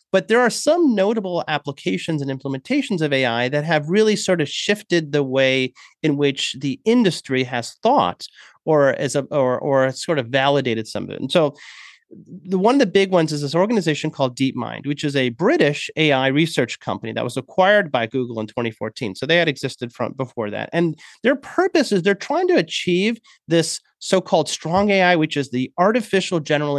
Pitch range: 145-210 Hz